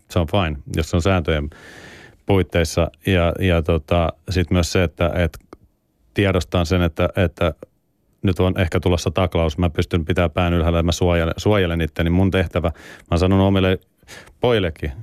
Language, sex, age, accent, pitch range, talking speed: Finnish, male, 30-49, native, 80-95 Hz, 165 wpm